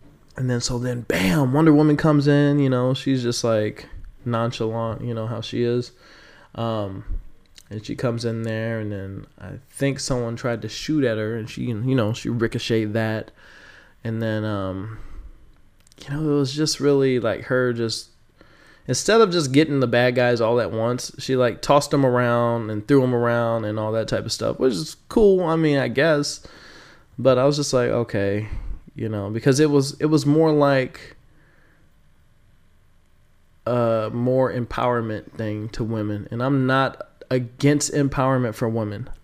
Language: English